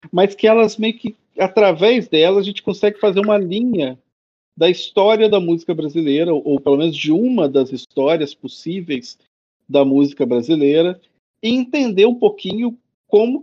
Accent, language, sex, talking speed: Brazilian, Portuguese, male, 155 wpm